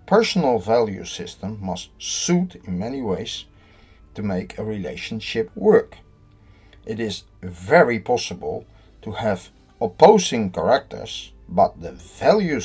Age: 60-79